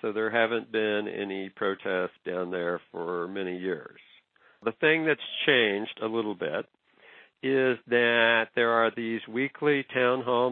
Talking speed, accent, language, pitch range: 150 wpm, American, English, 95-110 Hz